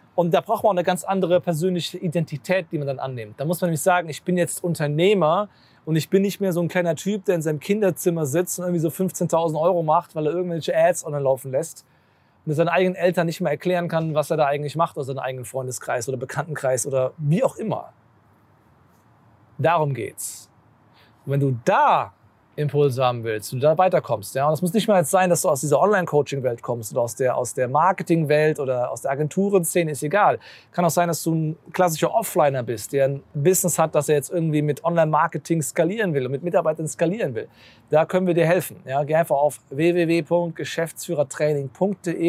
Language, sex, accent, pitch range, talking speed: German, male, German, 145-180 Hz, 205 wpm